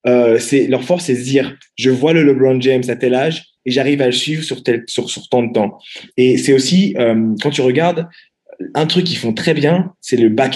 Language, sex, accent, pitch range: French, male, French, 115-145 Hz